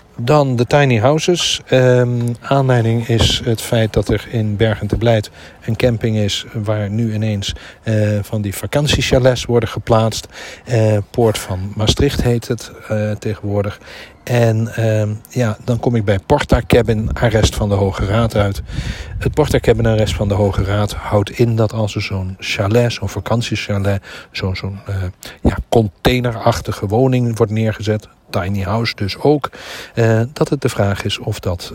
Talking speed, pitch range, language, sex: 165 wpm, 105-125 Hz, Dutch, male